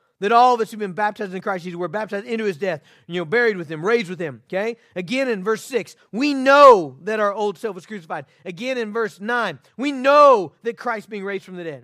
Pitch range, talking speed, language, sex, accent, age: 200-260 Hz, 255 wpm, English, male, American, 40-59